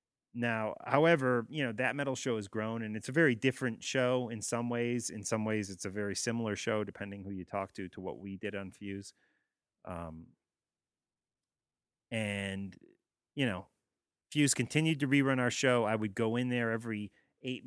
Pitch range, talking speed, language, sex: 100-125 Hz, 185 wpm, English, male